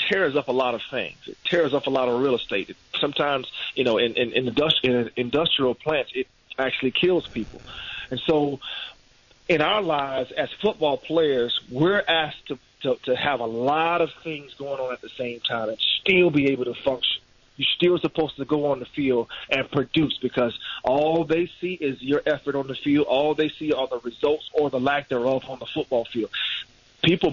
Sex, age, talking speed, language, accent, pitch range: male, 40-59, 205 wpm, English, American, 130-160 Hz